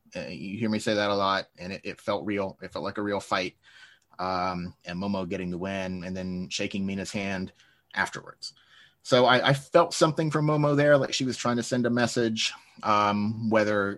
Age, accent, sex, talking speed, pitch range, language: 30-49, American, male, 205 wpm, 100-125 Hz, English